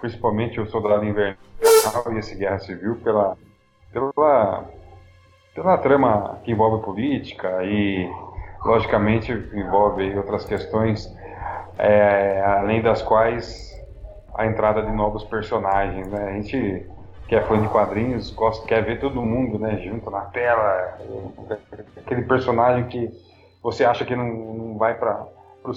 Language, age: Portuguese, 20-39